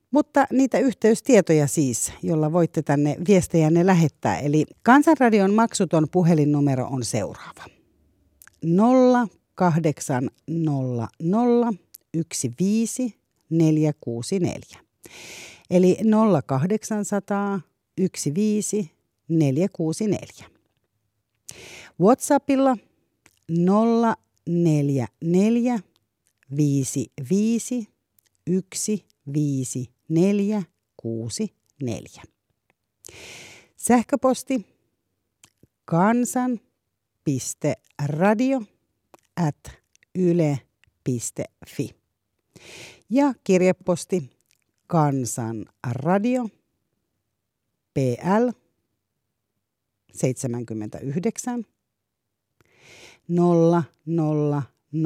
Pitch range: 125-205 Hz